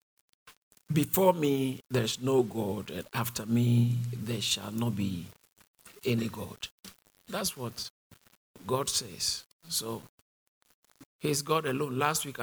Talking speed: 115 wpm